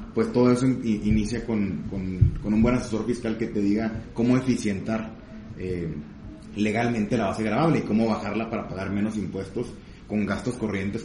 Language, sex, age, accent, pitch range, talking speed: Spanish, male, 30-49, Mexican, 100-120 Hz, 165 wpm